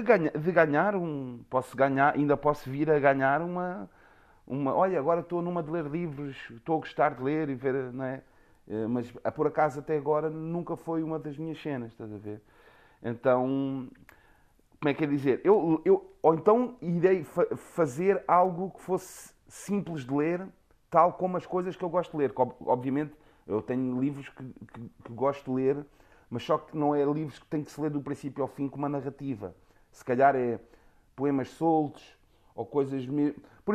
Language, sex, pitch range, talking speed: Portuguese, male, 135-175 Hz, 180 wpm